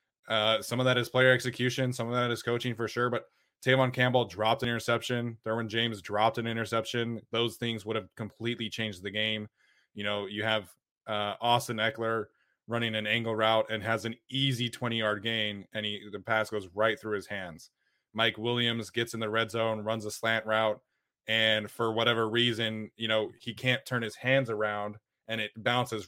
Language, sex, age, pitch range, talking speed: English, male, 20-39, 105-120 Hz, 200 wpm